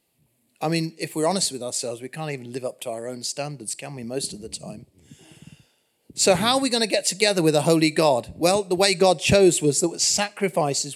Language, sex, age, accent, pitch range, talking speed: English, male, 40-59, British, 135-185 Hz, 230 wpm